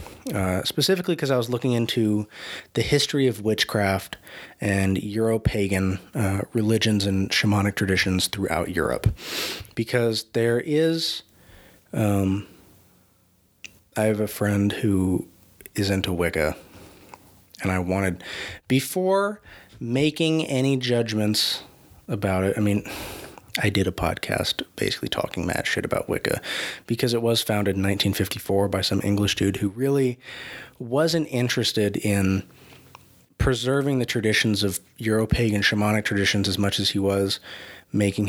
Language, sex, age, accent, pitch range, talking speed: English, male, 30-49, American, 100-125 Hz, 125 wpm